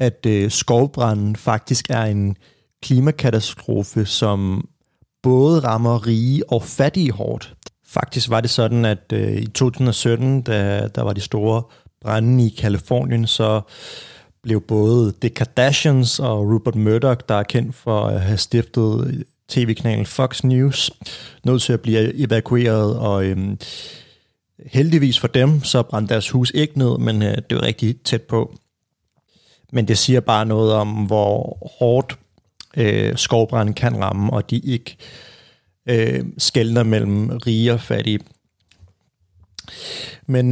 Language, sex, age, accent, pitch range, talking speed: Danish, male, 30-49, native, 110-130 Hz, 140 wpm